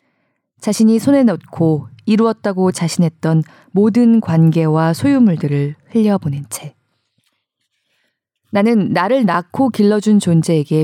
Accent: native